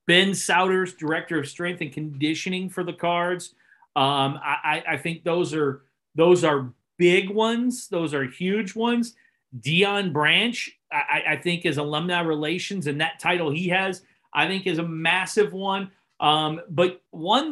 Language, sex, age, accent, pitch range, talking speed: English, male, 40-59, American, 155-200 Hz, 160 wpm